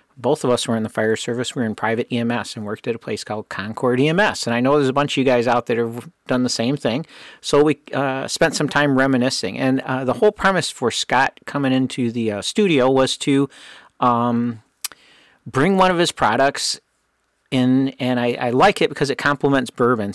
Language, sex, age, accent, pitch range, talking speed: English, male, 50-69, American, 120-145 Hz, 225 wpm